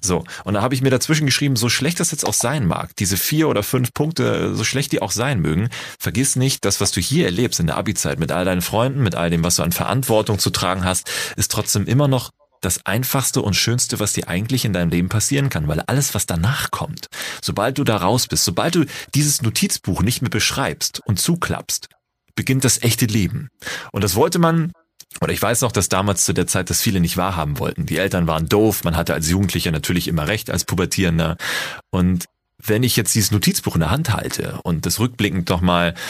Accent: German